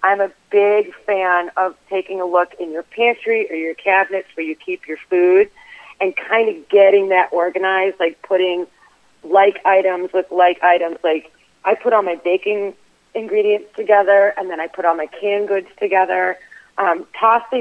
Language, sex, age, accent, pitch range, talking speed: English, female, 40-59, American, 165-205 Hz, 175 wpm